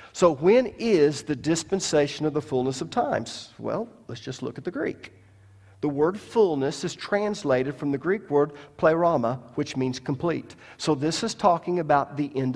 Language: English